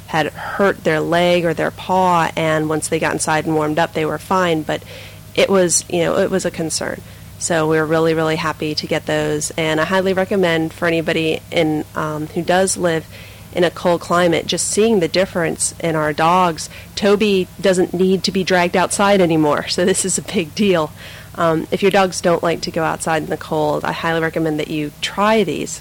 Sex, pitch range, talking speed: female, 160-190 Hz, 210 wpm